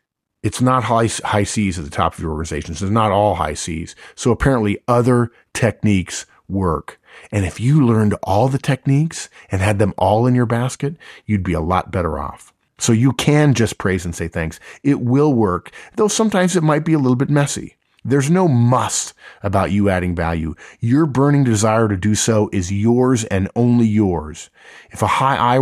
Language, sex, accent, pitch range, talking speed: English, male, American, 95-120 Hz, 195 wpm